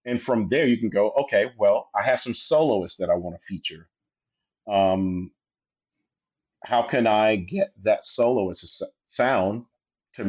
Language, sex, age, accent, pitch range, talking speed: English, male, 40-59, American, 100-120 Hz, 145 wpm